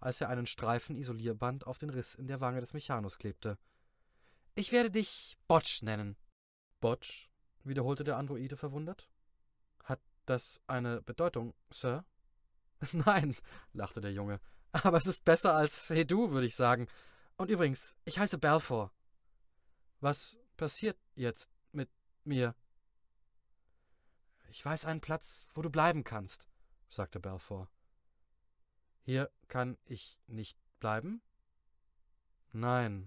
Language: German